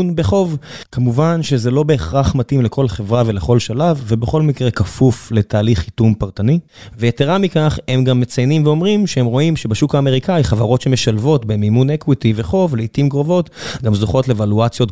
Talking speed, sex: 145 wpm, male